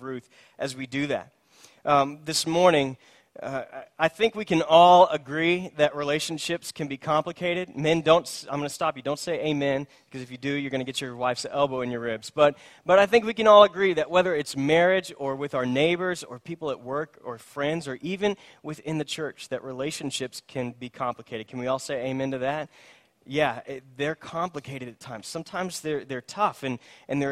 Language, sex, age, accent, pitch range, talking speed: English, male, 30-49, American, 135-170 Hz, 210 wpm